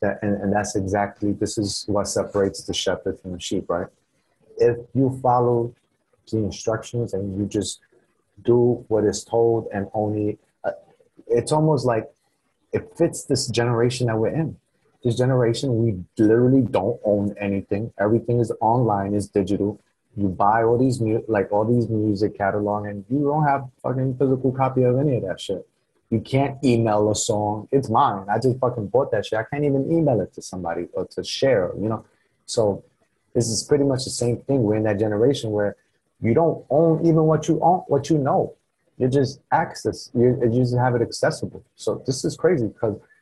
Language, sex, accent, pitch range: English, male, American, 105-135 Hz